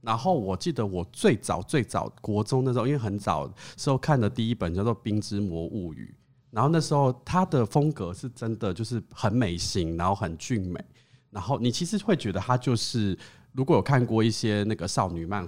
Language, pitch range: Chinese, 95-130 Hz